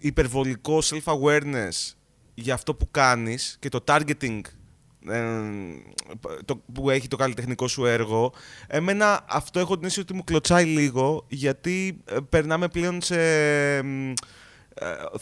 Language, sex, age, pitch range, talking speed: Greek, male, 20-39, 125-165 Hz, 120 wpm